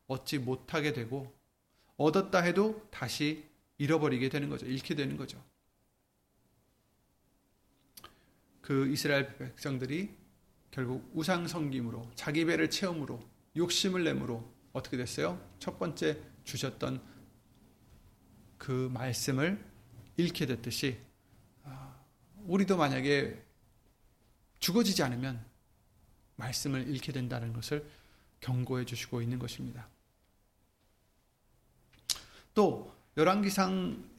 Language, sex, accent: Korean, male, native